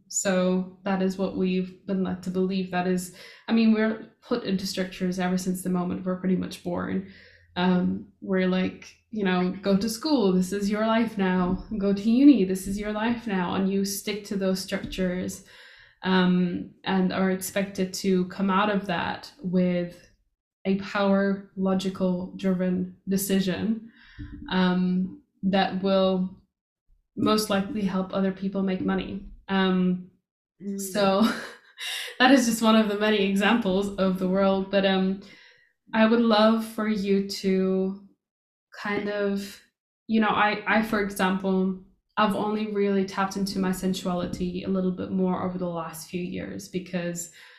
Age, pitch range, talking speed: 10-29, 185-200 Hz, 155 wpm